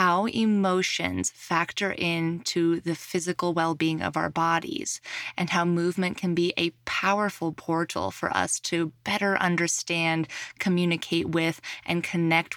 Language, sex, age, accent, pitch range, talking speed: English, female, 20-39, American, 165-195 Hz, 130 wpm